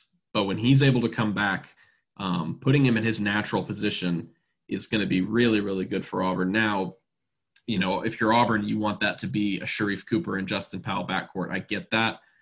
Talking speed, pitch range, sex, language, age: 215 wpm, 100-115 Hz, male, English, 10-29